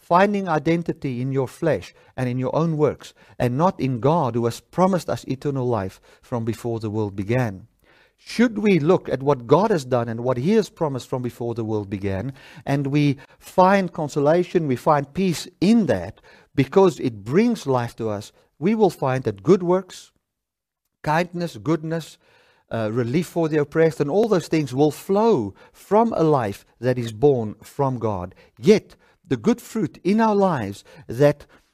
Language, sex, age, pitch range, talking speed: English, male, 50-69, 120-170 Hz, 175 wpm